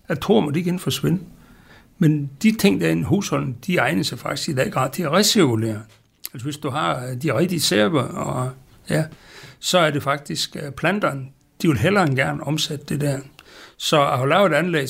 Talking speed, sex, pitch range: 195 wpm, male, 135-165 Hz